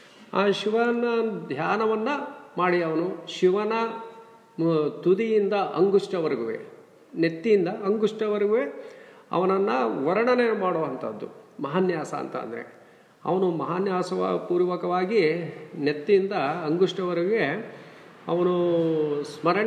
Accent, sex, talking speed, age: Indian, male, 105 wpm, 40-59